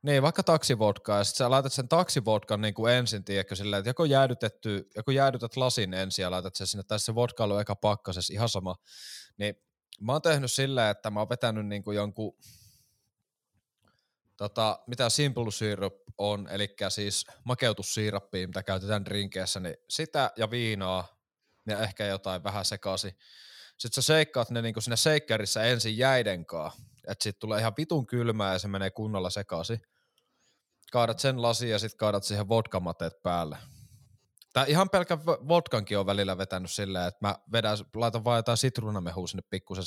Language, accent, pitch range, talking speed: Finnish, native, 100-120 Hz, 165 wpm